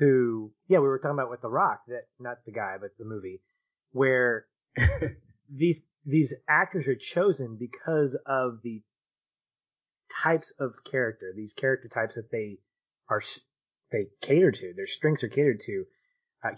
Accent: American